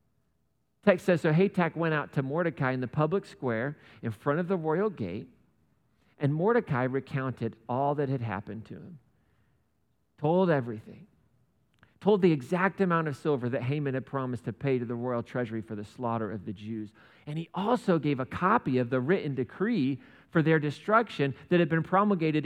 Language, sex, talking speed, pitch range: English, male, 180 wpm, 135-190 Hz